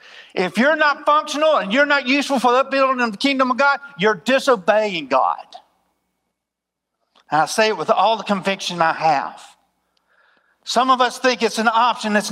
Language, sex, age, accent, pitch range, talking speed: English, male, 50-69, American, 210-270 Hz, 180 wpm